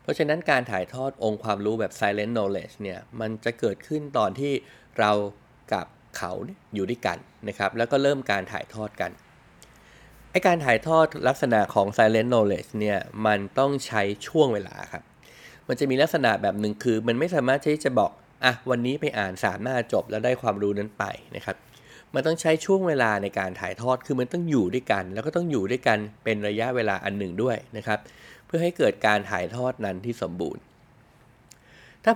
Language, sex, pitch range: Thai, male, 105-130 Hz